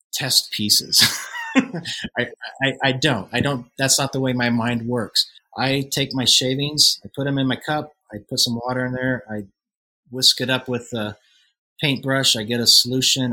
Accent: American